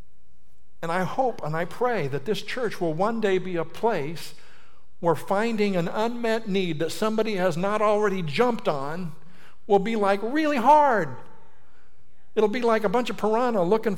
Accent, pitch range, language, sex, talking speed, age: American, 150-215 Hz, English, male, 170 wpm, 60-79